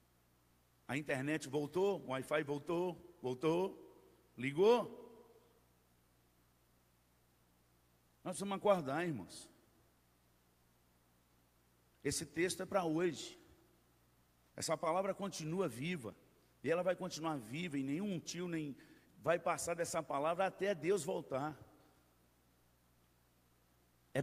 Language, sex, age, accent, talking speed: Portuguese, male, 60-79, Brazilian, 95 wpm